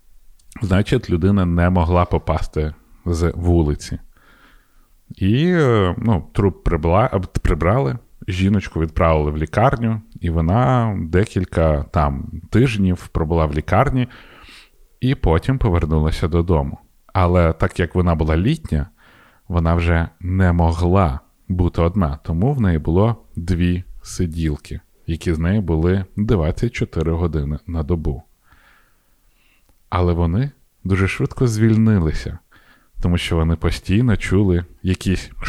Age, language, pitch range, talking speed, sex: 30-49, Ukrainian, 80-100 Hz, 110 wpm, male